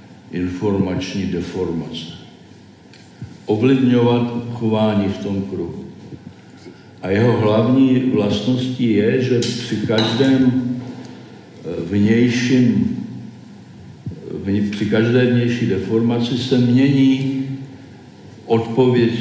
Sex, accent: male, native